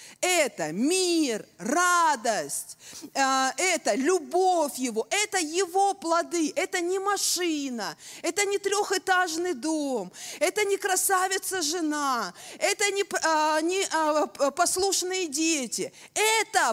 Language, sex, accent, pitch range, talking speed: Russian, female, native, 265-370 Hz, 90 wpm